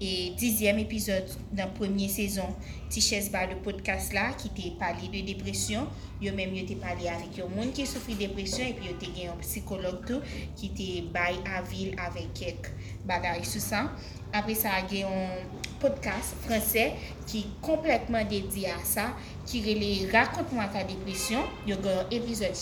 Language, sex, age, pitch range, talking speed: French, female, 30-49, 185-220 Hz, 180 wpm